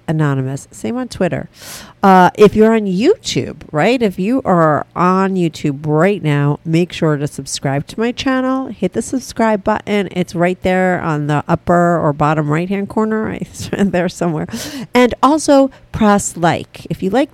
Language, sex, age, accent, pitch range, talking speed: English, female, 40-59, American, 160-230 Hz, 170 wpm